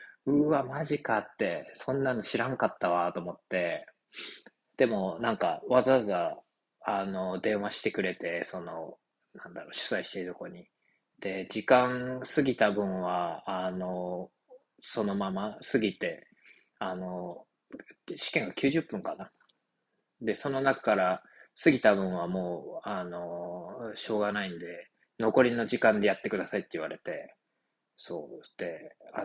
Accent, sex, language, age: native, male, Japanese, 20-39